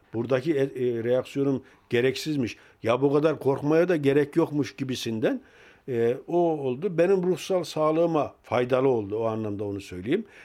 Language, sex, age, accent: German, male, 50-69, Turkish